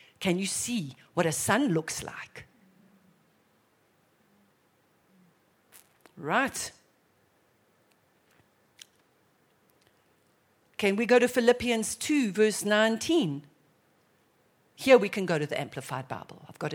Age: 60-79